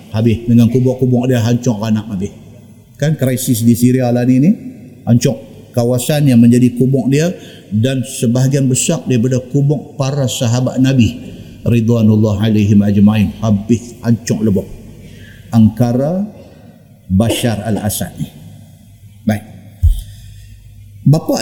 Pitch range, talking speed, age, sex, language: 105-130 Hz, 105 wpm, 50-69, male, Malay